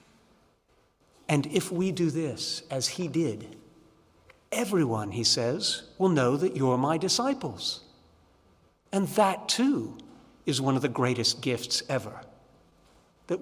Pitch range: 135-220 Hz